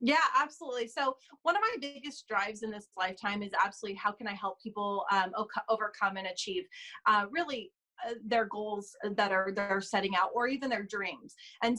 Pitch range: 200-235 Hz